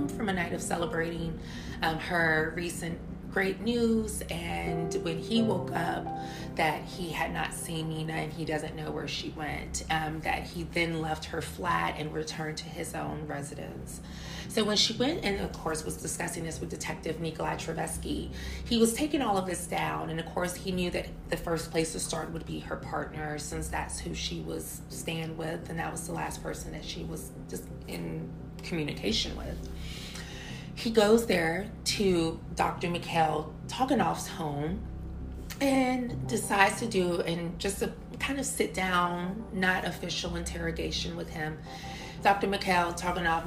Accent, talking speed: American, 170 wpm